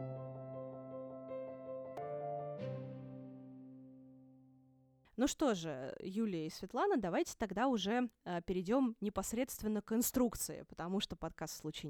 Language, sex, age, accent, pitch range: Russian, female, 20-39, native, 170-260 Hz